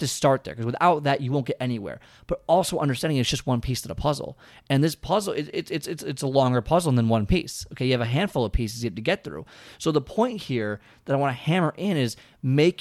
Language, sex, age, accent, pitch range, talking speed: English, male, 30-49, American, 120-160 Hz, 265 wpm